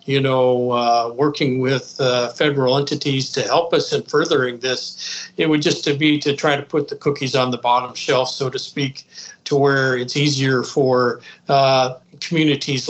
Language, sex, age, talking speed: English, male, 50-69, 180 wpm